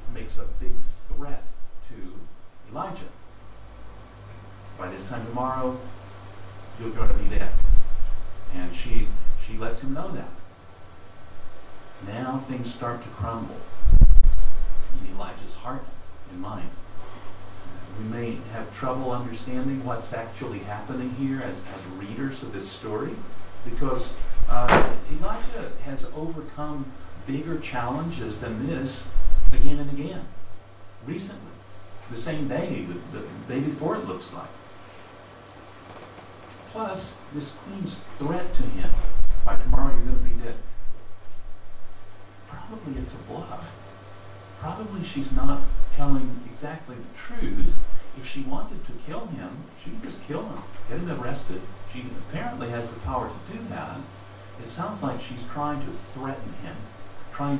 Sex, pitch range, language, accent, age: male, 95-130 Hz, Japanese, American, 50-69